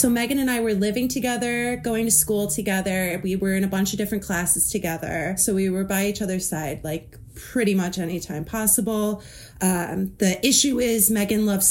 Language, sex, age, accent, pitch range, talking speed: English, female, 30-49, American, 185-220 Hz, 195 wpm